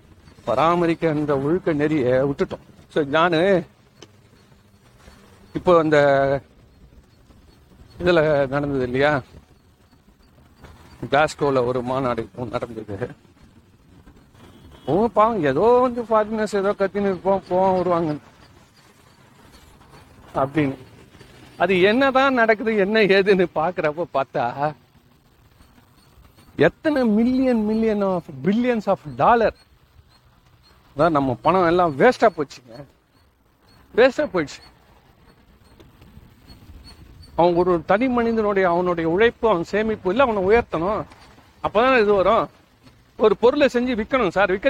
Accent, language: native, Tamil